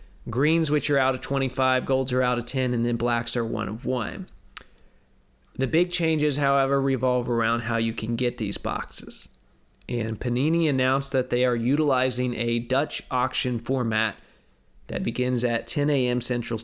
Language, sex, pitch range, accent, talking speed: English, male, 120-145 Hz, American, 170 wpm